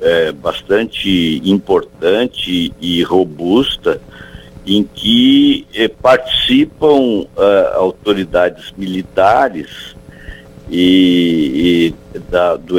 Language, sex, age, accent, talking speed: Portuguese, male, 60-79, Brazilian, 45 wpm